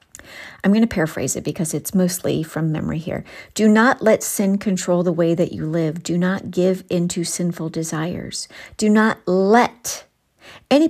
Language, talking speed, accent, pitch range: English, 170 wpm, American, 185-245 Hz